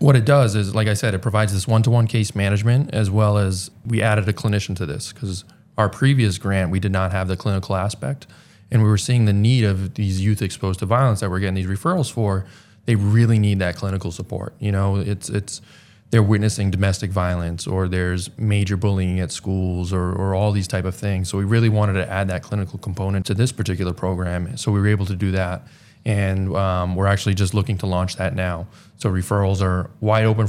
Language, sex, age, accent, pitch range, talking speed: English, male, 20-39, American, 95-110 Hz, 220 wpm